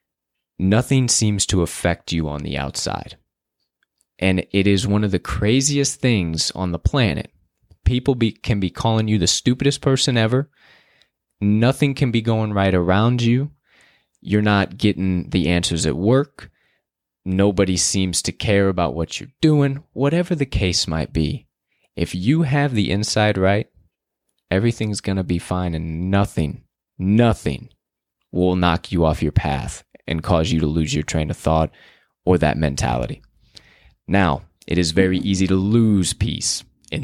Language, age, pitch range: English, 20-39, 85-110 Hz